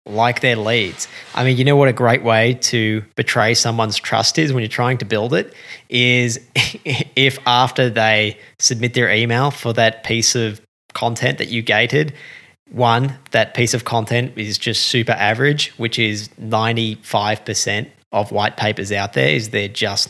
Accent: Australian